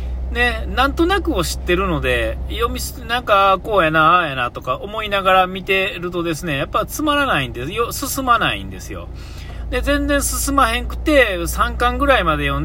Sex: male